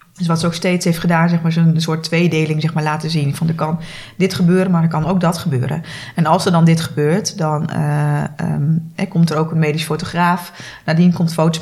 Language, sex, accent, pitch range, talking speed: Dutch, female, Dutch, 155-175 Hz, 240 wpm